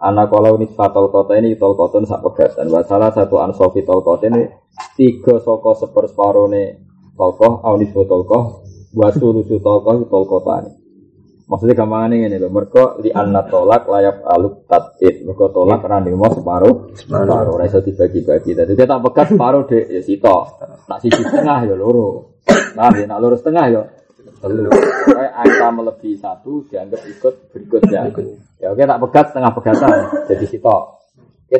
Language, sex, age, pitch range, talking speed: Malay, male, 20-39, 105-170 Hz, 165 wpm